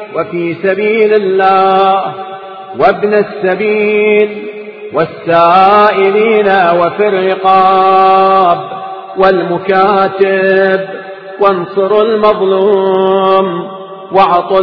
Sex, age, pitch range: male, 40-59, 185-210 Hz